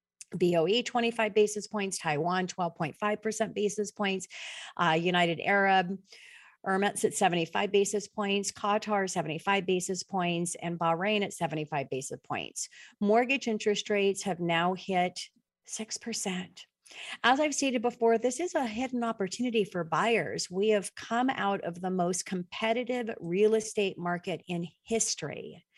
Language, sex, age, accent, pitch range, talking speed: English, female, 40-59, American, 180-225 Hz, 135 wpm